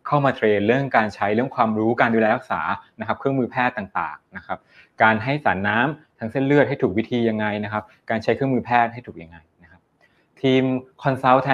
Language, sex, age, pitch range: Thai, male, 20-39, 105-130 Hz